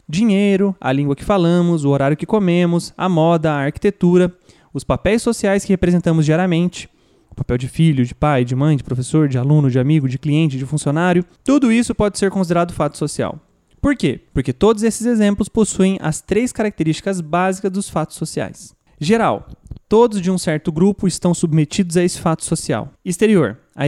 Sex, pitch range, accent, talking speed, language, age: male, 155-205 Hz, Brazilian, 180 wpm, English, 20-39